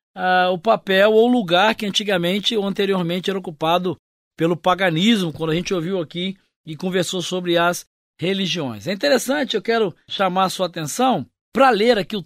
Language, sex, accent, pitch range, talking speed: Portuguese, male, Brazilian, 175-230 Hz, 165 wpm